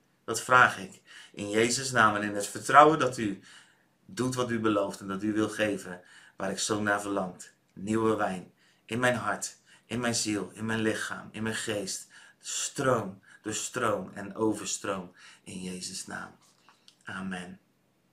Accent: Dutch